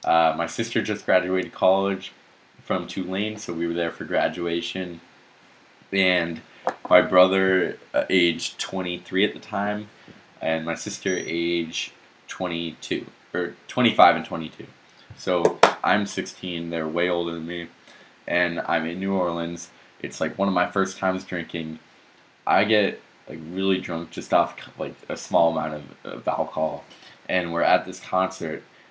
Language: English